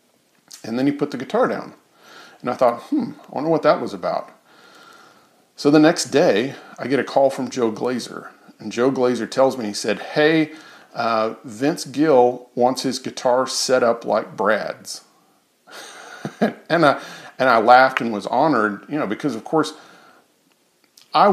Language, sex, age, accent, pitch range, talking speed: English, male, 50-69, American, 110-135 Hz, 170 wpm